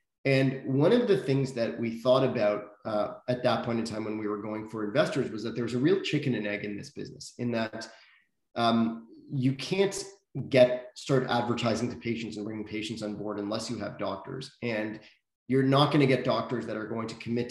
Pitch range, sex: 110-125 Hz, male